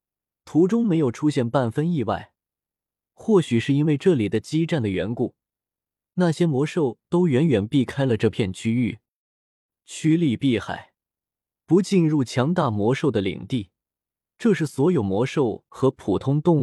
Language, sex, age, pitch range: Chinese, male, 20-39, 110-155 Hz